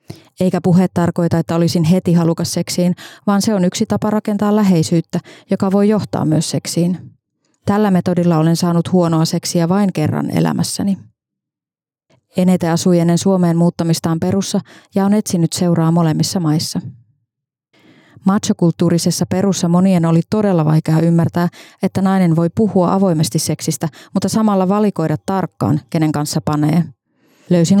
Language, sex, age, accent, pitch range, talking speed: Finnish, female, 30-49, native, 160-190 Hz, 135 wpm